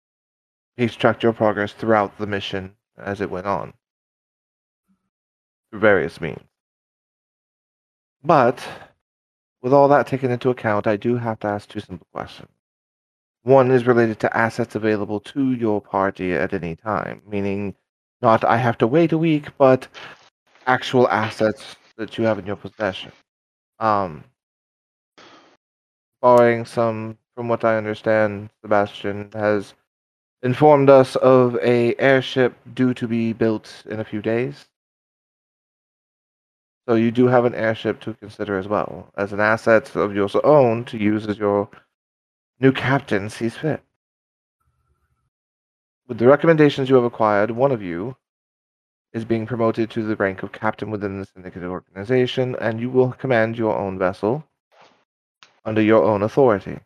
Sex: male